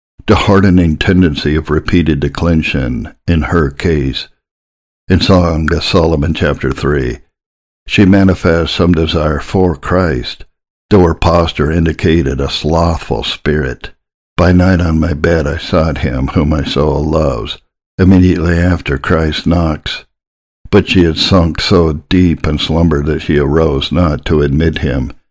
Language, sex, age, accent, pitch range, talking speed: English, male, 60-79, American, 75-90 Hz, 140 wpm